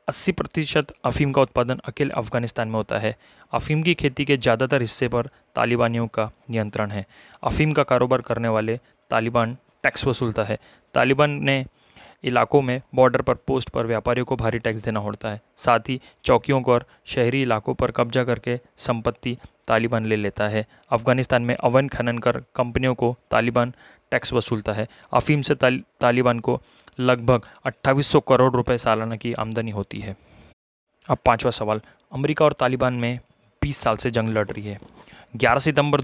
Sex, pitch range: male, 115-130 Hz